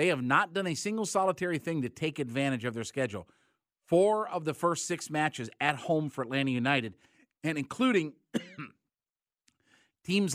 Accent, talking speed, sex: American, 160 wpm, male